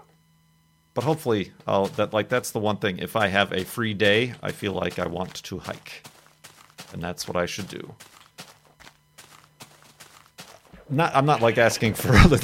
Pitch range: 95-130 Hz